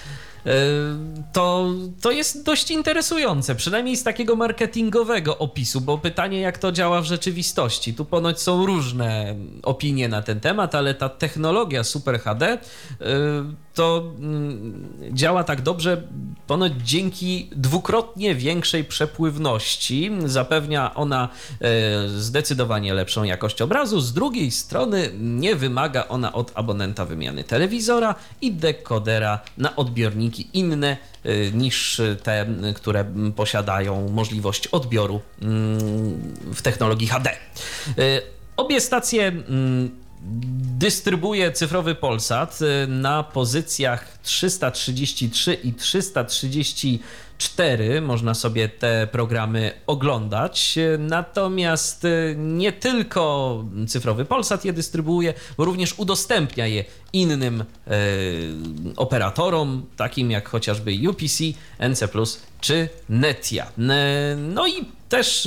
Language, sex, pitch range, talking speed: Polish, male, 115-170 Hz, 100 wpm